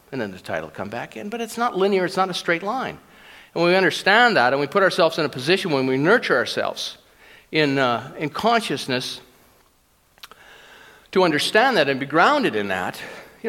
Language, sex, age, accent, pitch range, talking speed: English, male, 50-69, American, 120-175 Hz, 195 wpm